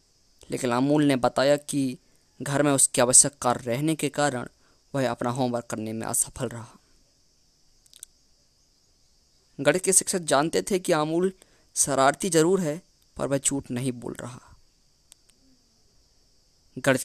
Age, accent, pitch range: 20-39, native, 125-160 Hz